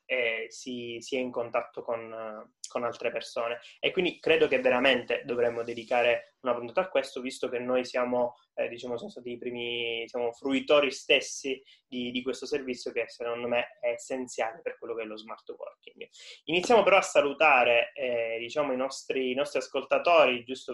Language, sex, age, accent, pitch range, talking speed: Italian, male, 20-39, native, 125-180 Hz, 180 wpm